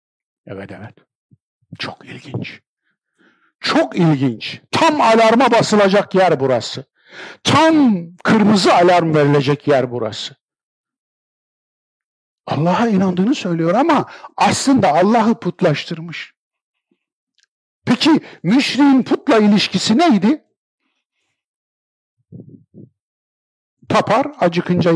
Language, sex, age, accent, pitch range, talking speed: Turkish, male, 50-69, native, 150-225 Hz, 75 wpm